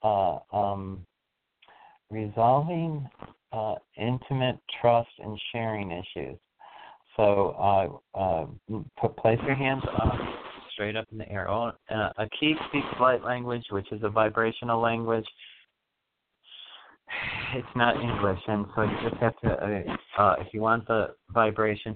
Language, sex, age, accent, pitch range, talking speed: English, male, 40-59, American, 105-120 Hz, 135 wpm